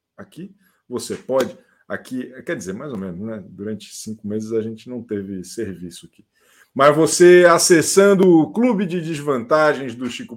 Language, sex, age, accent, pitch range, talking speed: Portuguese, male, 50-69, Brazilian, 120-185 Hz, 160 wpm